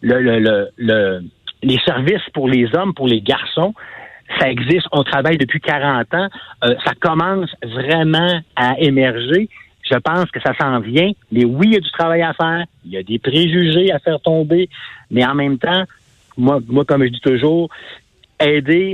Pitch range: 130-170 Hz